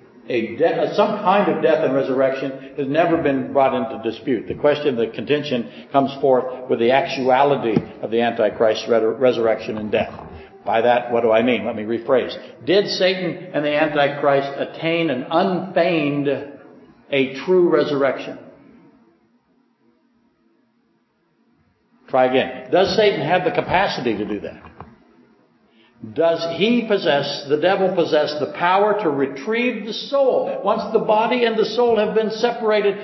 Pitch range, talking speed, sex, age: 135-210 Hz, 145 wpm, male, 60-79